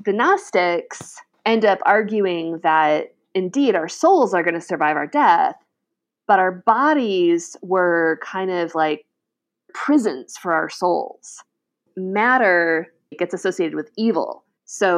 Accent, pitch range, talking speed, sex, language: American, 165-225 Hz, 130 wpm, female, English